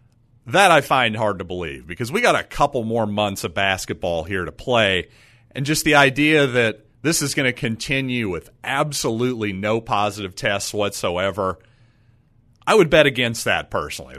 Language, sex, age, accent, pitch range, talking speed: English, male, 40-59, American, 115-140 Hz, 170 wpm